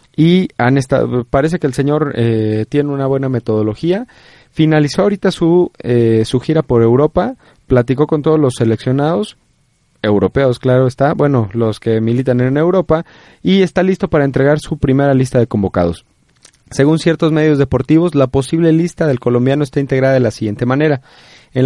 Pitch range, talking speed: 125-165 Hz, 165 wpm